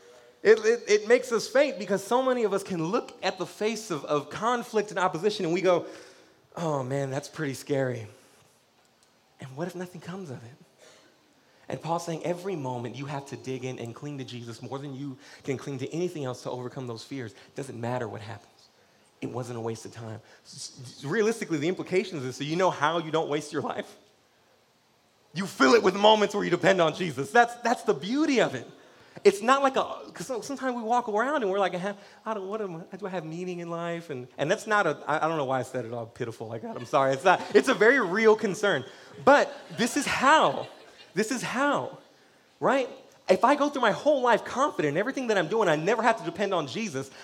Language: English